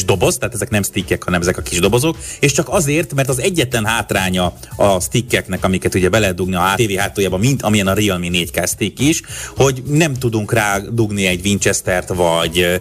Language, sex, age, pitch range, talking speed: Hungarian, male, 30-49, 95-125 Hz, 185 wpm